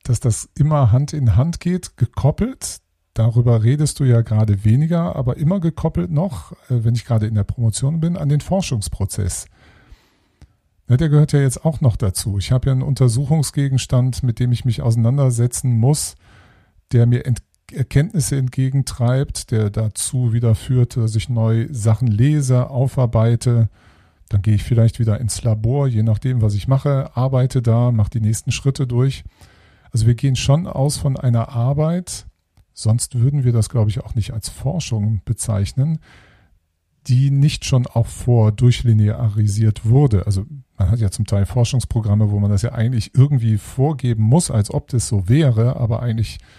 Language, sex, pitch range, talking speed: German, male, 105-135 Hz, 165 wpm